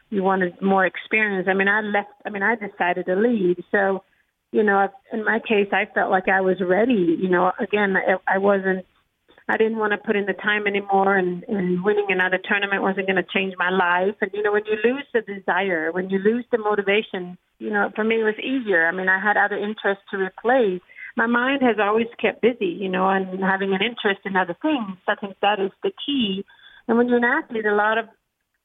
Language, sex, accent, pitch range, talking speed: English, female, American, 190-215 Hz, 230 wpm